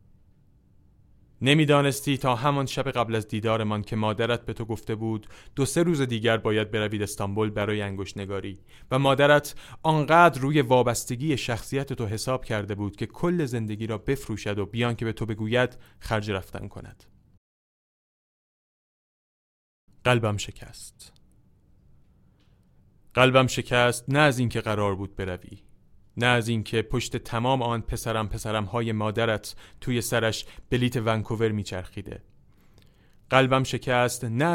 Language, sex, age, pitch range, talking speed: Persian, male, 30-49, 105-125 Hz, 130 wpm